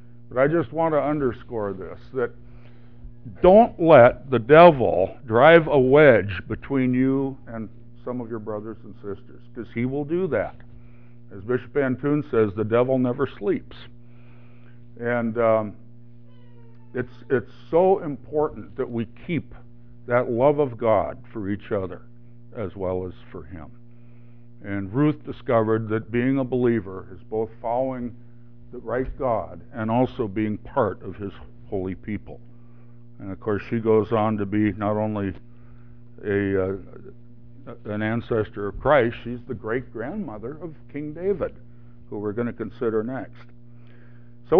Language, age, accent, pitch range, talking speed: English, 60-79, American, 115-130 Hz, 145 wpm